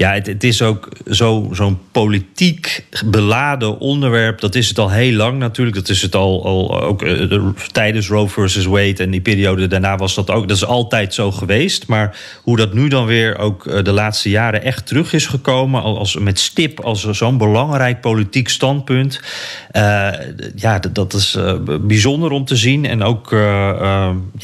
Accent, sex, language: Dutch, male, Dutch